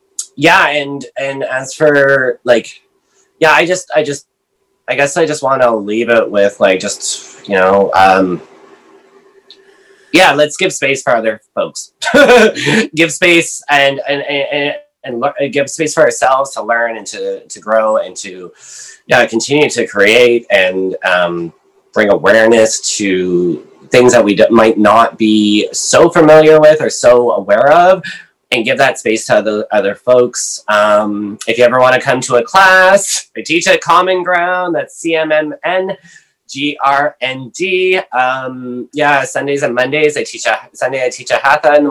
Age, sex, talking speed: 20-39, male, 175 wpm